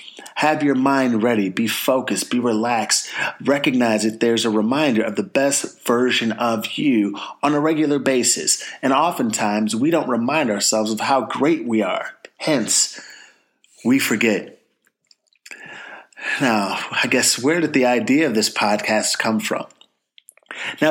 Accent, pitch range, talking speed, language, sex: American, 110-145 Hz, 145 wpm, English, male